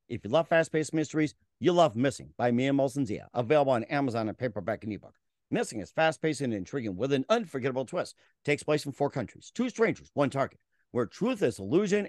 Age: 50-69